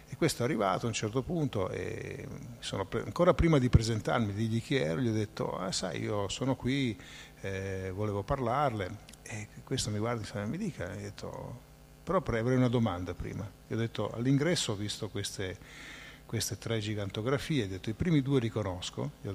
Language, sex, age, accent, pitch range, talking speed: Italian, male, 50-69, native, 105-135 Hz, 200 wpm